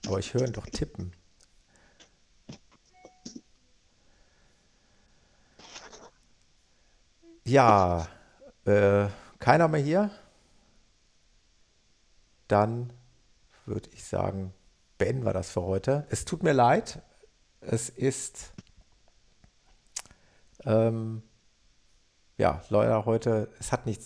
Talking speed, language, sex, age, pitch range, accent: 80 wpm, German, male, 50-69, 95-115 Hz, German